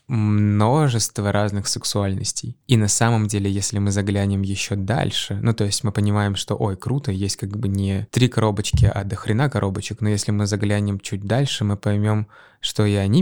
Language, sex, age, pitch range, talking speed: Russian, male, 20-39, 100-115 Hz, 180 wpm